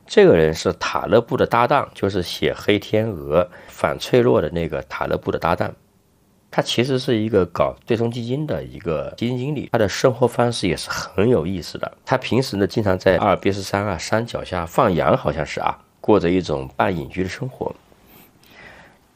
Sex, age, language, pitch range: male, 40-59, Chinese, 85-120 Hz